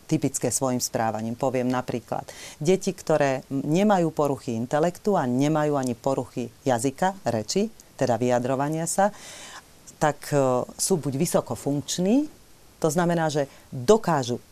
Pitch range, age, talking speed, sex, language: 130-180 Hz, 40-59, 110 wpm, female, Slovak